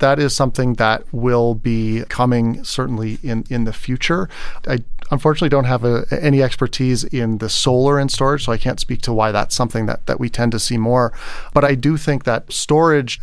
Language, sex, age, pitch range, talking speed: English, male, 30-49, 115-140 Hz, 205 wpm